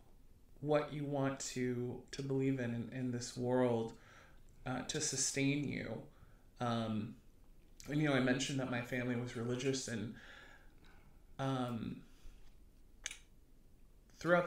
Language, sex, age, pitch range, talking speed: English, male, 30-49, 120-135 Hz, 120 wpm